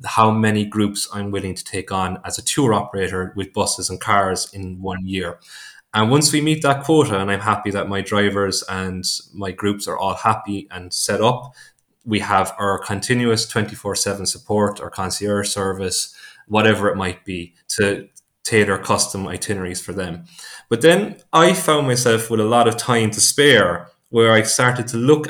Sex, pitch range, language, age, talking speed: male, 95-115 Hz, English, 20-39, 180 wpm